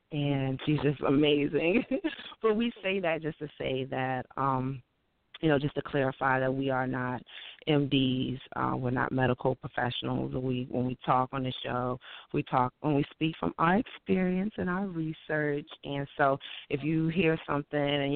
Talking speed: 175 wpm